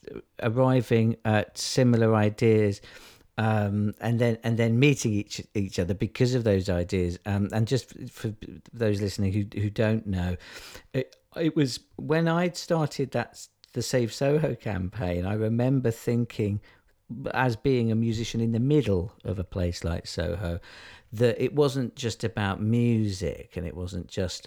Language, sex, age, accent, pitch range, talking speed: English, male, 50-69, British, 95-120 Hz, 155 wpm